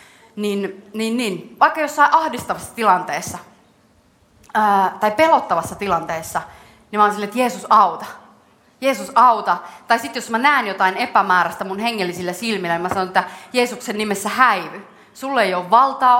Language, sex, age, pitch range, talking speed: Finnish, female, 30-49, 170-225 Hz, 150 wpm